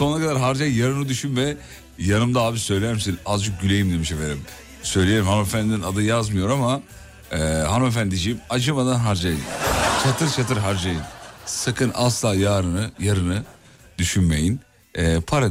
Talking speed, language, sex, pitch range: 130 wpm, Turkish, male, 85-115 Hz